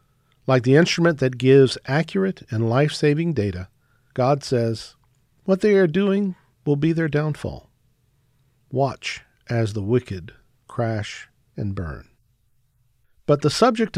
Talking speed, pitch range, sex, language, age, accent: 125 wpm, 115-150 Hz, male, English, 50-69, American